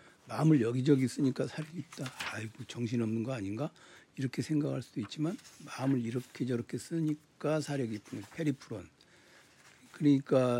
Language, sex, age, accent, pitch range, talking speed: English, male, 60-79, Korean, 115-155 Hz, 120 wpm